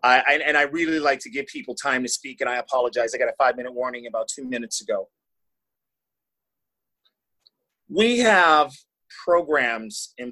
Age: 30-49